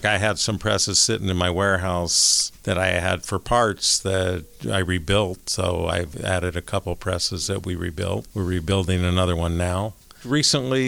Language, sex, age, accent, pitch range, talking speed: English, male, 50-69, American, 90-100 Hz, 170 wpm